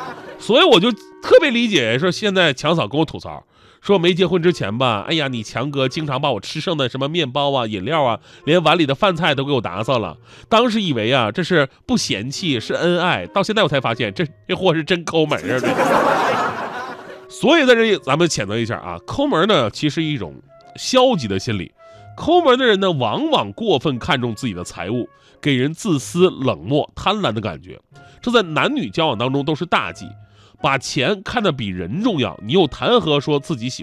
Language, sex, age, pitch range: Chinese, male, 30-49, 120-185 Hz